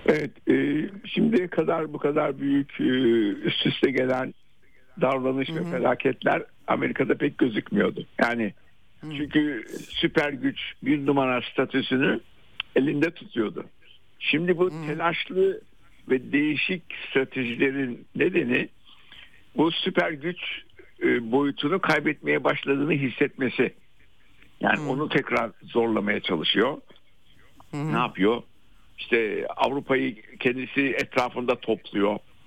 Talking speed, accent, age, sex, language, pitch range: 90 wpm, native, 60-79, male, Turkish, 115-170 Hz